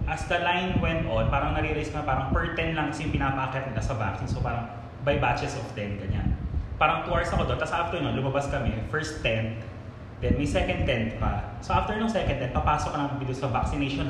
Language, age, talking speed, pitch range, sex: Filipino, 20-39, 220 wpm, 110-145 Hz, male